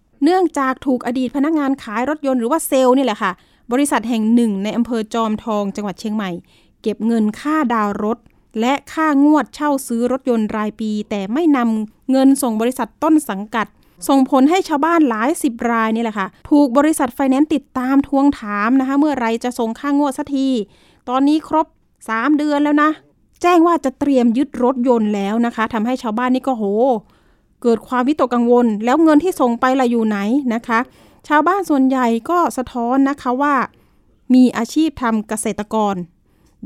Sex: female